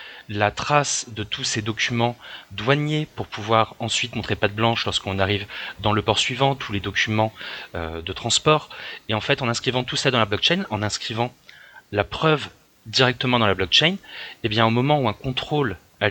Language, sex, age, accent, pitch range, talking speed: French, male, 30-49, French, 105-130 Hz, 200 wpm